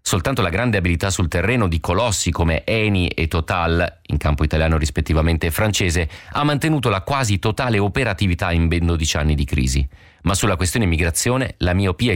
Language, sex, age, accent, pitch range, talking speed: Italian, male, 40-59, native, 85-115 Hz, 175 wpm